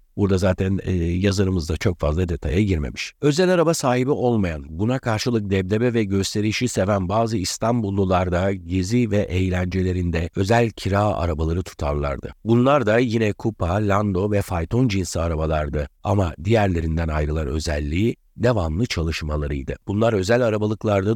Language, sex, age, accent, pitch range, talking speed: Turkish, male, 60-79, native, 90-120 Hz, 130 wpm